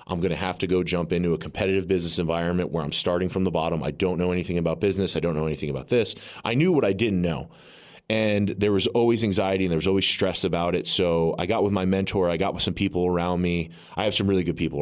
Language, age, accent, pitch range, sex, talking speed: English, 30-49, American, 85-95 Hz, male, 270 wpm